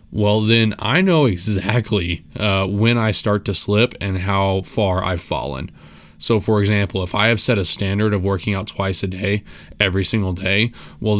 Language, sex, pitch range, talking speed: English, male, 95-110 Hz, 190 wpm